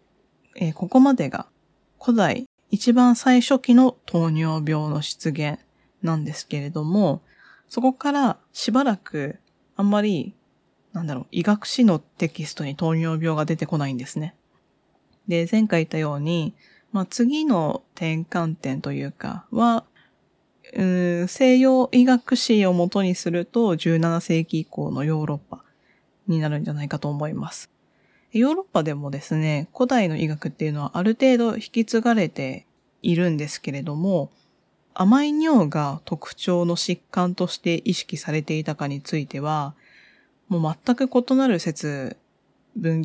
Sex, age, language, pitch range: female, 20-39, Japanese, 155-230 Hz